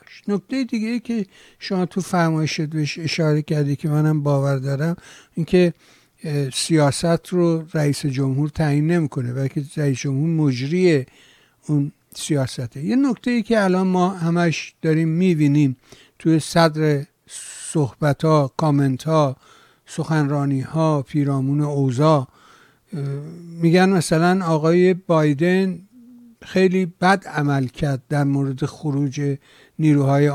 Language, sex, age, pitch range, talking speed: English, male, 60-79, 140-175 Hz, 115 wpm